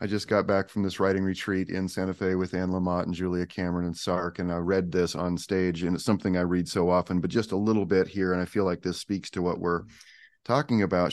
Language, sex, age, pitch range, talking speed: English, male, 30-49, 85-100 Hz, 265 wpm